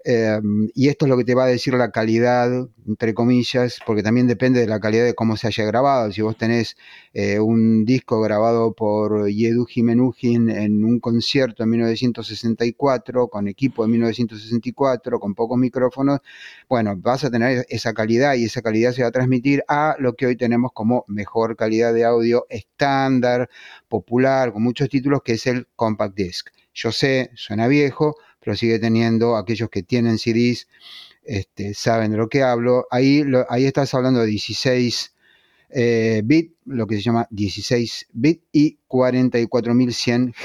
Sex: male